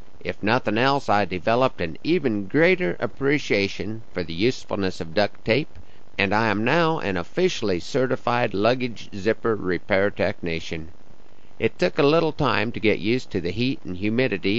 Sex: male